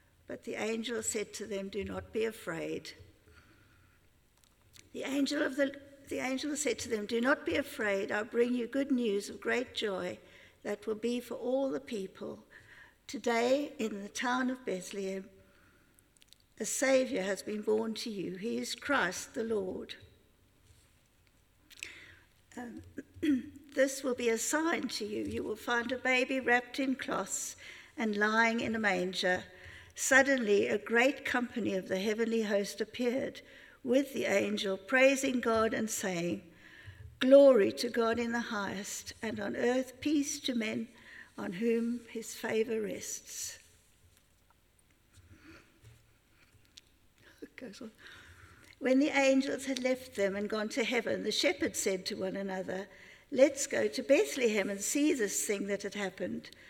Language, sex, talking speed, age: English, female, 145 wpm, 60-79